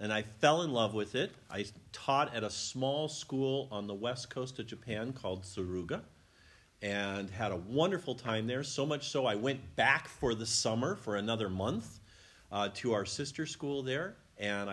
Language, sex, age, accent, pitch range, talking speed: English, male, 50-69, American, 100-125 Hz, 185 wpm